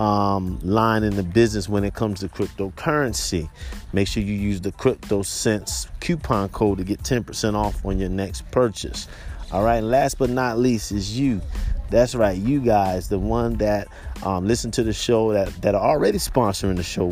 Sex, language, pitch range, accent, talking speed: male, English, 95-130 Hz, American, 180 wpm